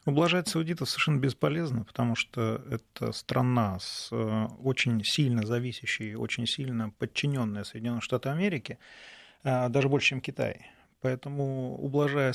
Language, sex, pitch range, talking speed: Russian, male, 115-145 Hz, 115 wpm